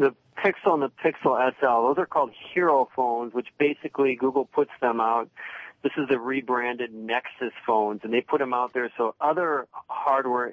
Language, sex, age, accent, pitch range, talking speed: English, male, 40-59, American, 110-130 Hz, 180 wpm